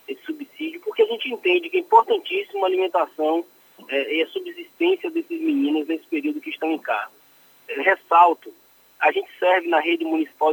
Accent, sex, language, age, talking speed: Brazilian, male, Portuguese, 20-39, 175 wpm